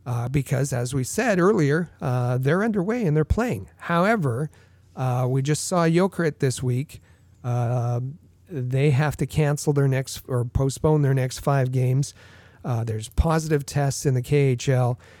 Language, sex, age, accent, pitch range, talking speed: English, male, 40-59, American, 125-150 Hz, 160 wpm